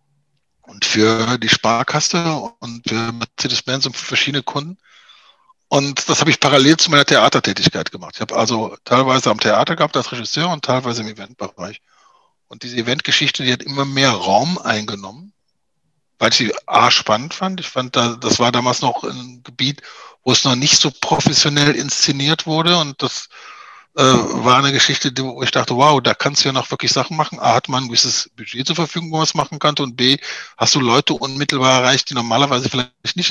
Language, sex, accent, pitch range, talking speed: German, male, German, 125-155 Hz, 190 wpm